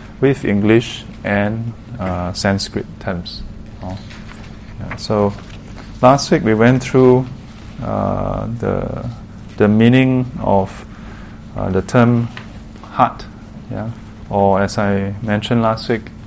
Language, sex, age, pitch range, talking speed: English, male, 20-39, 105-115 Hz, 110 wpm